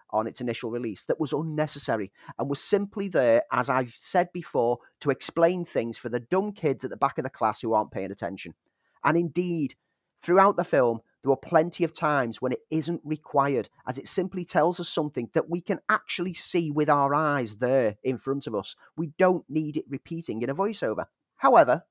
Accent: British